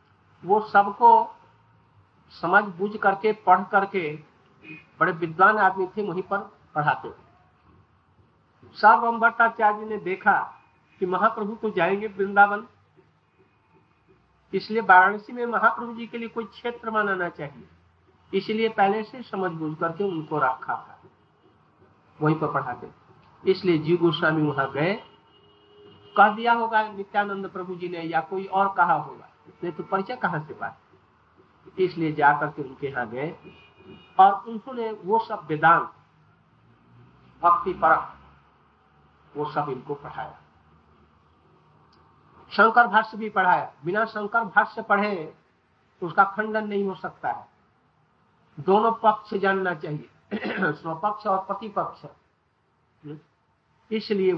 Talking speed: 110 wpm